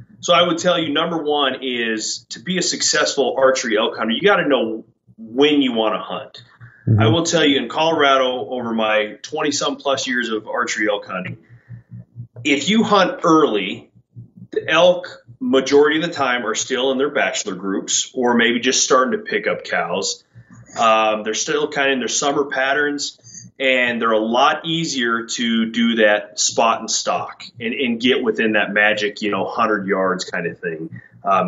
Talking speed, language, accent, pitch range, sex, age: 185 wpm, English, American, 115-145 Hz, male, 30-49